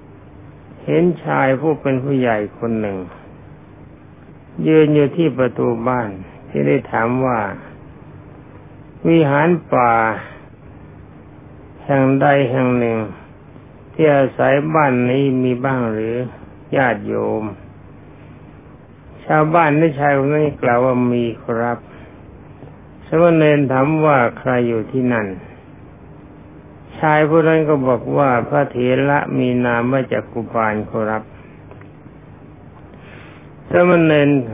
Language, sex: Thai, male